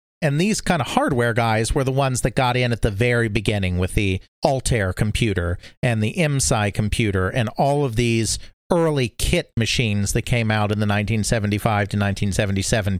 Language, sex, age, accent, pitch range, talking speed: English, male, 40-59, American, 100-125 Hz, 180 wpm